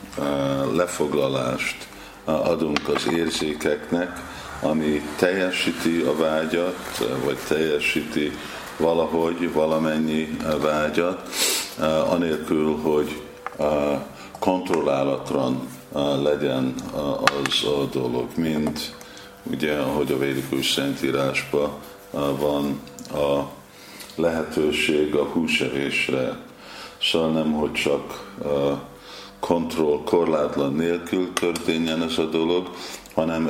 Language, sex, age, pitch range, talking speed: Hungarian, male, 50-69, 70-85 Hz, 75 wpm